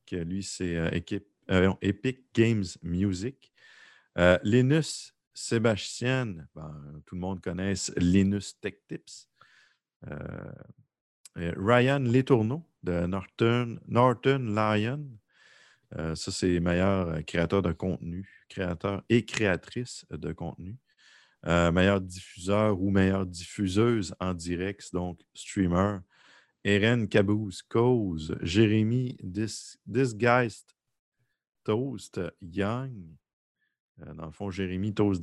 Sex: male